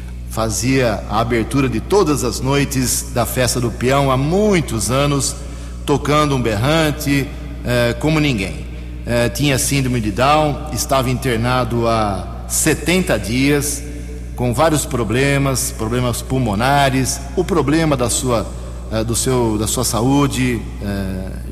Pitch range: 110-140 Hz